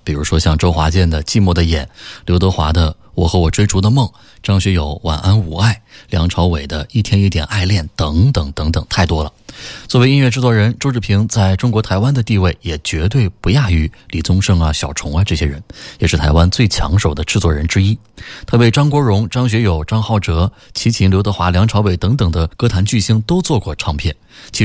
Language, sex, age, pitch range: Chinese, male, 20-39, 85-120 Hz